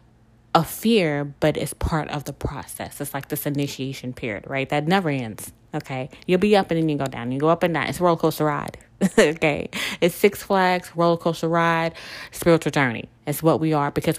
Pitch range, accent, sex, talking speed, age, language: 145-180 Hz, American, female, 210 wpm, 20-39, English